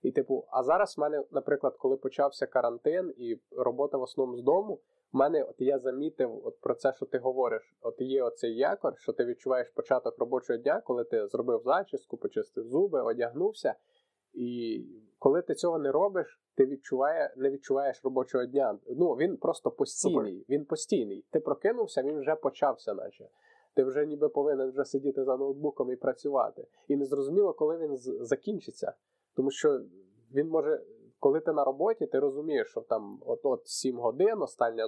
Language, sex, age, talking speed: Ukrainian, male, 20-39, 170 wpm